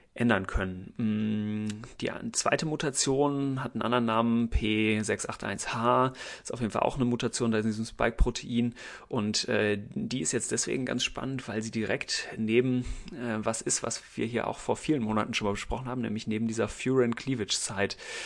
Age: 30-49